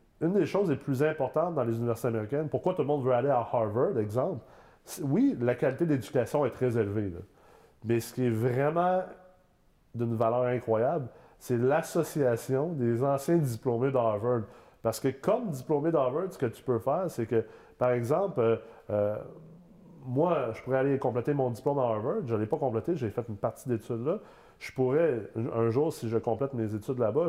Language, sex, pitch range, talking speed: French, male, 115-155 Hz, 190 wpm